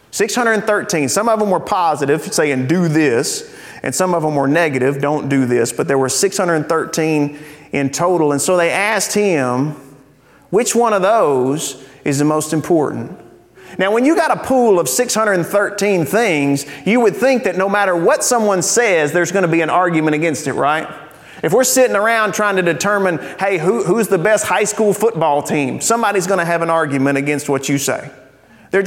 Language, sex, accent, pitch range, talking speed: English, male, American, 140-195 Hz, 185 wpm